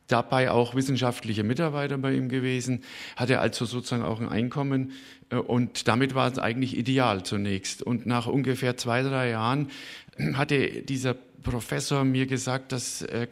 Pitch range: 120-140 Hz